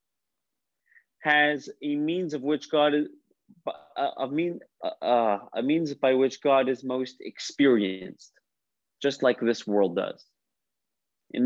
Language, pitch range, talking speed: English, 125-170 Hz, 130 wpm